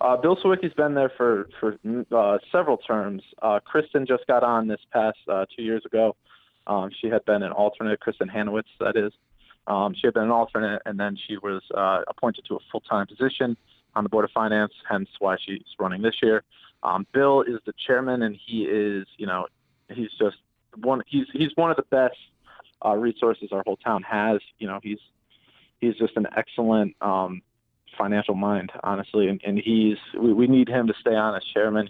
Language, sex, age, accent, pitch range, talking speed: English, male, 20-39, American, 105-120 Hz, 200 wpm